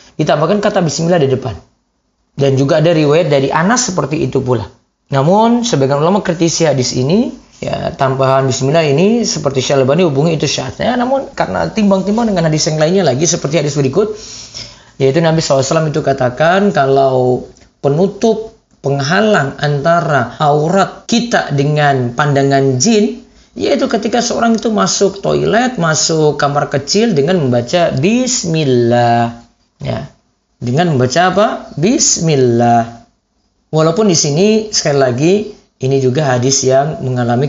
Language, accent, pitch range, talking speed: Indonesian, native, 130-185 Hz, 130 wpm